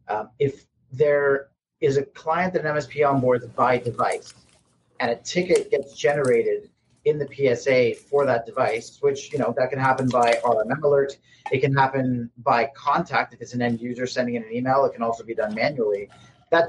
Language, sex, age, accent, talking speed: English, male, 40-59, American, 190 wpm